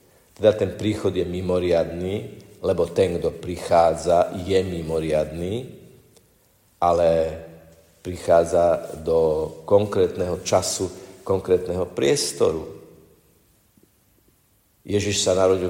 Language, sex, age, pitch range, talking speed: Slovak, male, 50-69, 85-115 Hz, 80 wpm